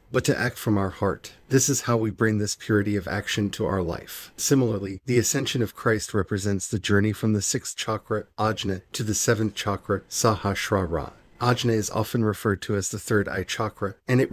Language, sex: English, male